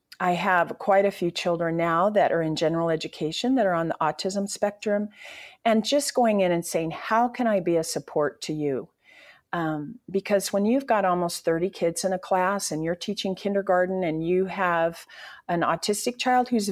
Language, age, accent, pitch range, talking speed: English, 40-59, American, 155-200 Hz, 195 wpm